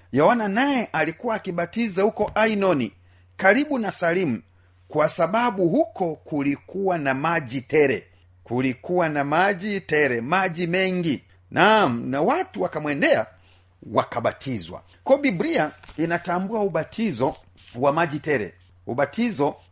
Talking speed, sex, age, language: 105 wpm, male, 40-59, Swahili